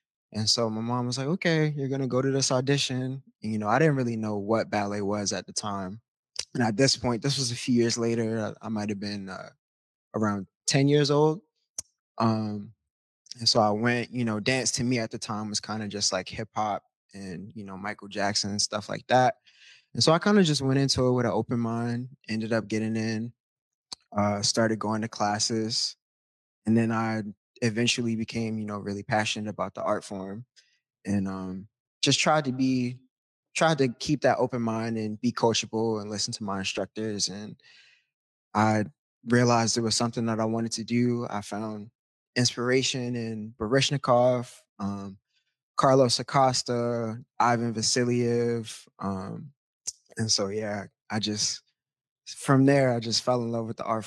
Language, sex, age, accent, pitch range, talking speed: English, male, 20-39, American, 105-125 Hz, 185 wpm